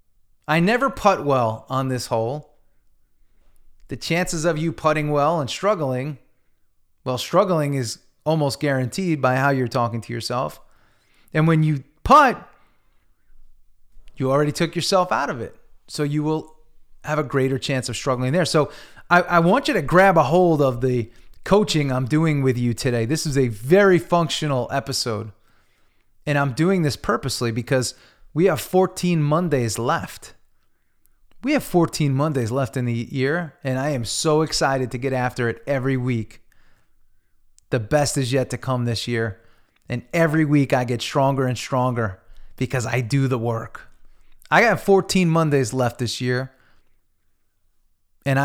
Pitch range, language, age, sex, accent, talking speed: 115-155 Hz, English, 30-49, male, American, 160 wpm